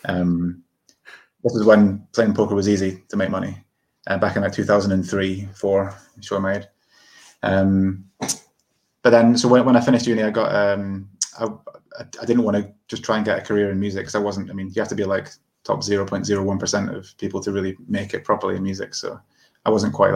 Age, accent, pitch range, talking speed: 20-39, British, 95-110 Hz, 215 wpm